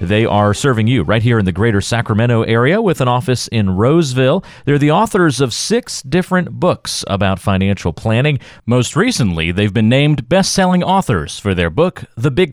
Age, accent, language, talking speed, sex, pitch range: 40-59, American, English, 180 wpm, male, 95-150 Hz